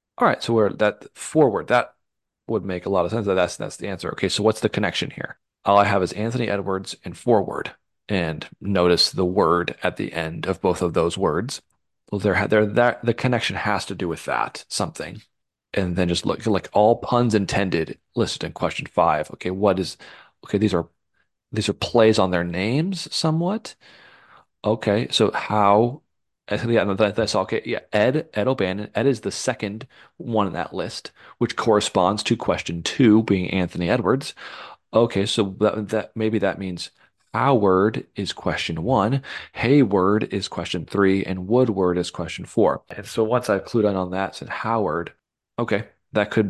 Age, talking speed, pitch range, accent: 30-49, 185 wpm, 95-115 Hz, American